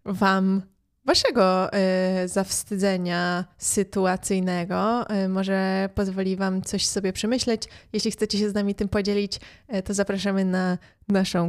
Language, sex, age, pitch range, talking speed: Polish, female, 20-39, 190-210 Hz, 125 wpm